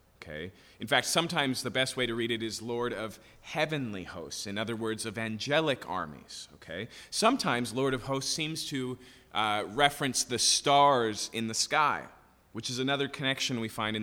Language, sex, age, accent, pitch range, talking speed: English, male, 30-49, American, 110-145 Hz, 175 wpm